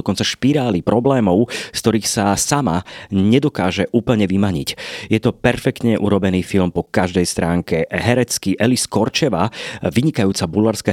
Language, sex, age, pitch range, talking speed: Slovak, male, 30-49, 95-115 Hz, 125 wpm